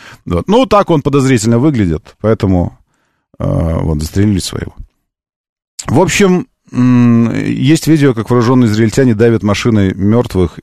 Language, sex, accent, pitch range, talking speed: Russian, male, native, 95-140 Hz, 120 wpm